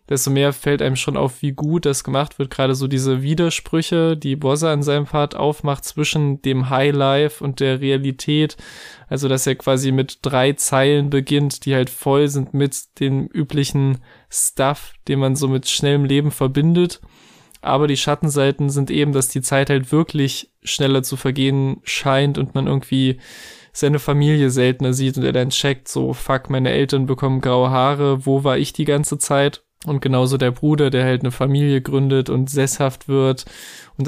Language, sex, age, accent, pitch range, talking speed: German, male, 20-39, German, 130-145 Hz, 180 wpm